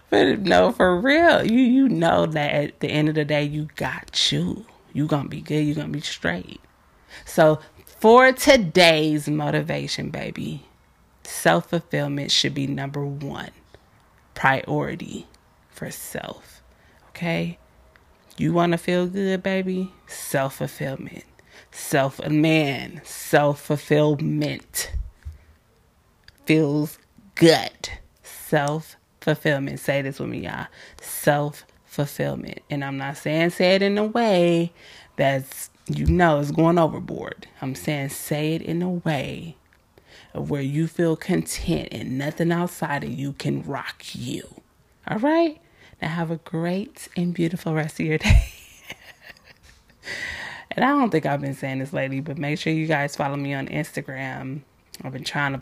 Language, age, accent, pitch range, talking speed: English, 20-39, American, 135-170 Hz, 140 wpm